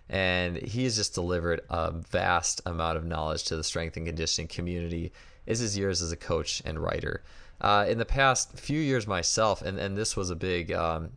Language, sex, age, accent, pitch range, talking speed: English, male, 20-39, American, 85-100 Hz, 210 wpm